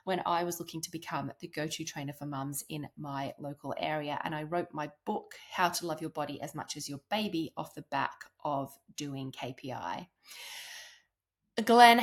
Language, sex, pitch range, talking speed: English, female, 155-195 Hz, 185 wpm